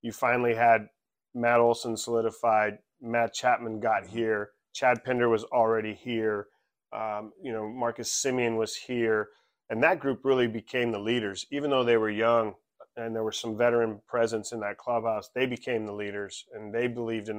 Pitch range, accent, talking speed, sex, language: 110-125 Hz, American, 175 wpm, male, English